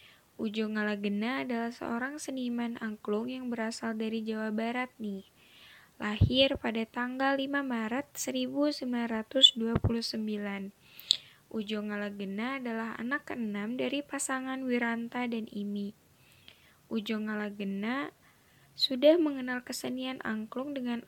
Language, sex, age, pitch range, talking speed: Indonesian, female, 10-29, 220-265 Hz, 100 wpm